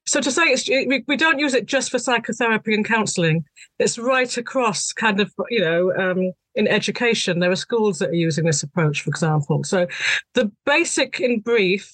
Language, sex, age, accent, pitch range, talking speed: English, female, 40-59, British, 175-230 Hz, 190 wpm